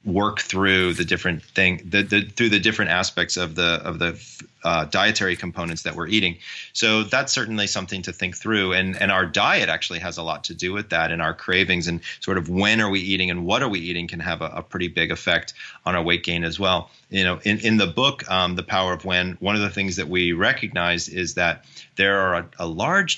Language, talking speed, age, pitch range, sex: English, 240 wpm, 30-49, 90-105 Hz, male